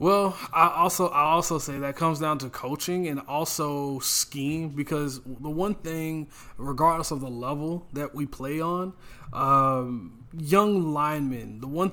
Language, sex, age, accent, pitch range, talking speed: English, male, 20-39, American, 135-180 Hz, 155 wpm